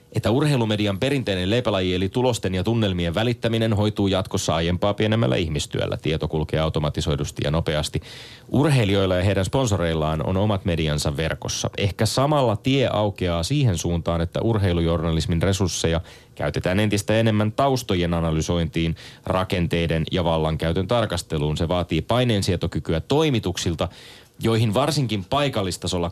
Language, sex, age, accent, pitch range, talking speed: Finnish, male, 30-49, native, 85-110 Hz, 115 wpm